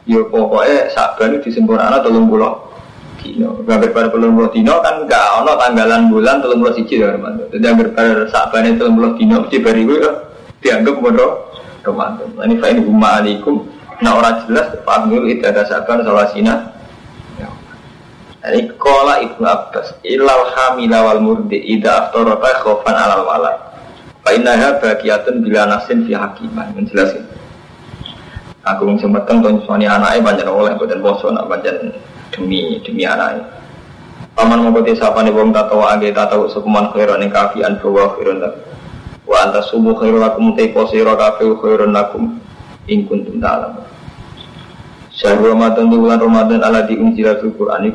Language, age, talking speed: Indonesian, 20-39, 70 wpm